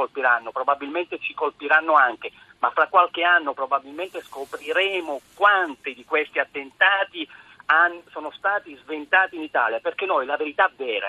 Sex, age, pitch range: male, 50-69, 150-230 Hz